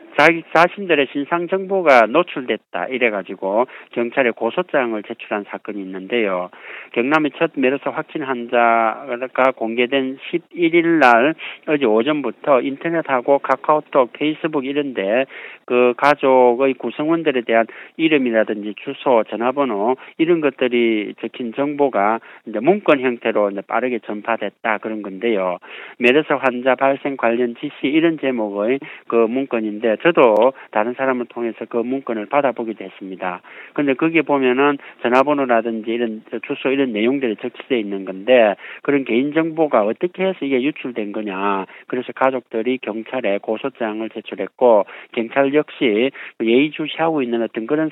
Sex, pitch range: male, 110-140 Hz